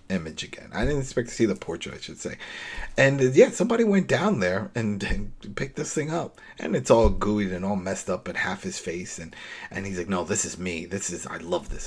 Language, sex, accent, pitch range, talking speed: English, male, American, 95-125 Hz, 255 wpm